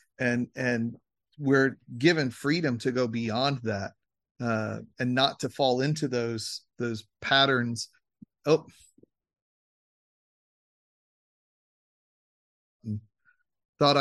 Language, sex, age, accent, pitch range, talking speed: English, male, 40-59, American, 120-150 Hz, 85 wpm